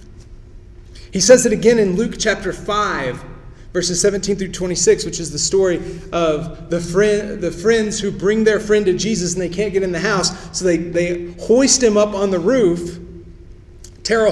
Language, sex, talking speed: English, male, 190 wpm